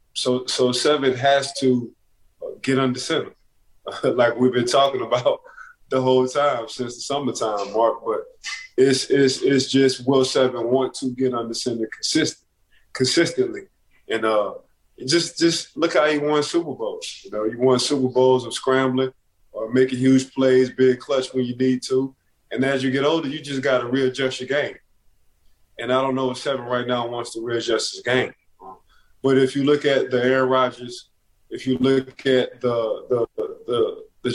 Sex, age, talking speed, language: male, 20-39, 180 wpm, English